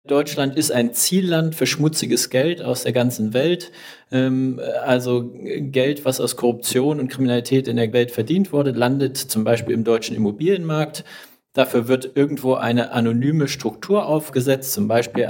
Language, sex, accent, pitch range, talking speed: German, male, German, 125-160 Hz, 150 wpm